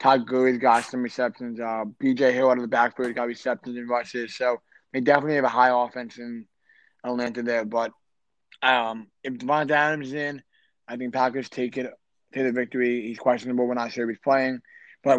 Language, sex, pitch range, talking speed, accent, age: English, male, 120-140 Hz, 200 wpm, American, 20-39